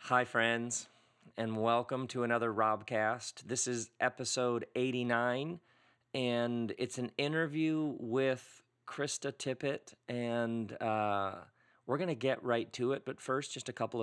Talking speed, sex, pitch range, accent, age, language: 135 wpm, male, 110-130 Hz, American, 40-59, English